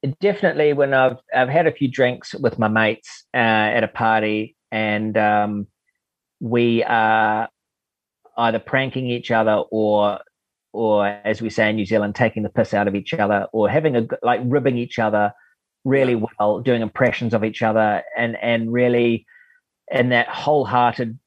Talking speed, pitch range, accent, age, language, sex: 165 wpm, 110-125 Hz, Australian, 30-49, English, male